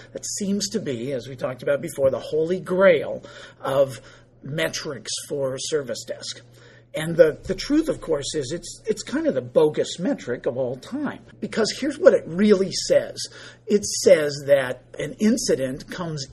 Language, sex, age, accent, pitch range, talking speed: English, male, 50-69, American, 135-215 Hz, 175 wpm